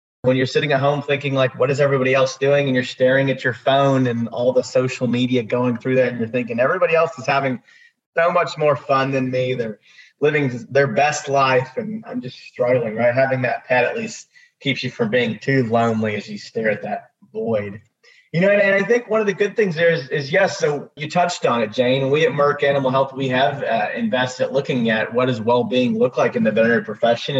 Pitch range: 125-155 Hz